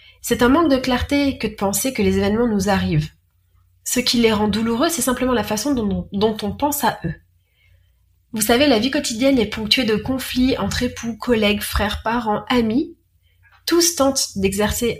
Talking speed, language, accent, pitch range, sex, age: 185 wpm, French, French, 185-235 Hz, female, 30-49